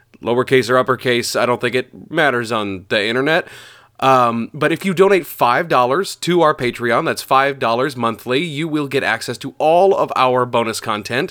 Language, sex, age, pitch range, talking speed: English, male, 30-49, 120-145 Hz, 175 wpm